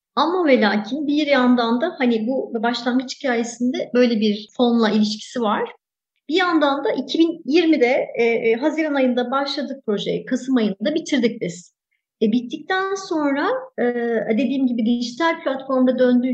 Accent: native